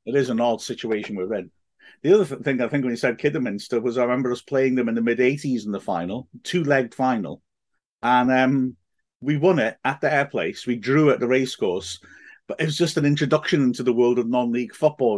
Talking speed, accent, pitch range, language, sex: 220 wpm, British, 125-150 Hz, English, male